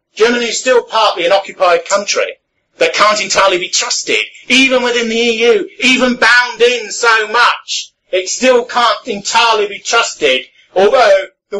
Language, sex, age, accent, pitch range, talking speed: English, male, 40-59, British, 175-285 Hz, 150 wpm